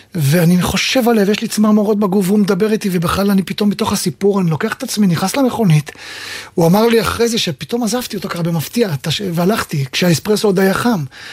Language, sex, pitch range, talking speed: Hebrew, male, 165-225 Hz, 190 wpm